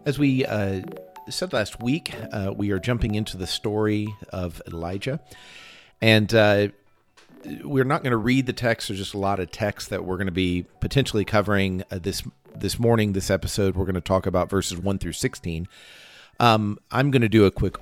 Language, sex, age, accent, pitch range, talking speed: English, male, 50-69, American, 95-115 Hz, 200 wpm